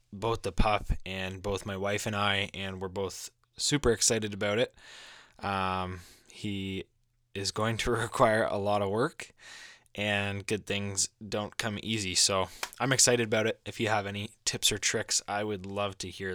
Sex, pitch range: male, 95-115 Hz